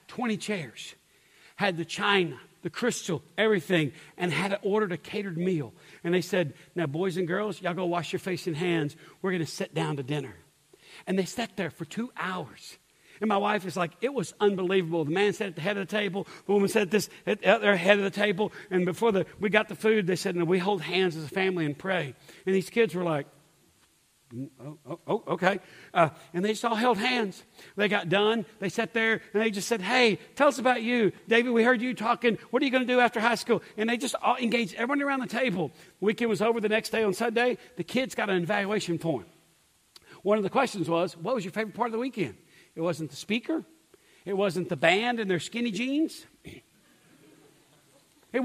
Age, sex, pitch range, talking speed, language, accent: 60-79, male, 175-230 Hz, 225 wpm, English, American